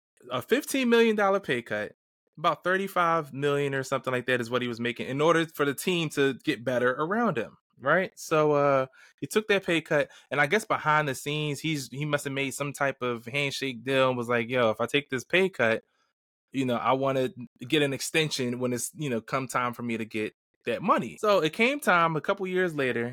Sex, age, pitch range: male, 20-39, 120-155 Hz